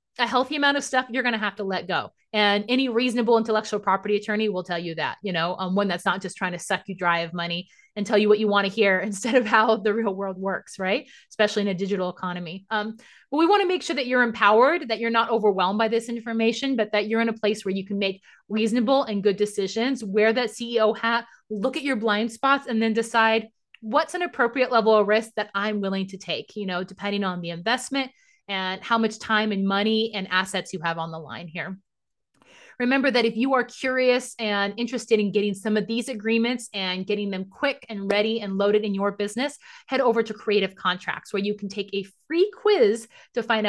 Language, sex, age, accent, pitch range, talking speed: English, female, 30-49, American, 195-235 Hz, 235 wpm